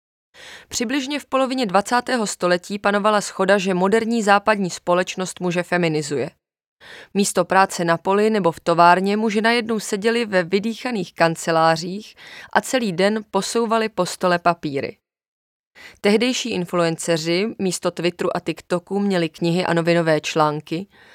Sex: female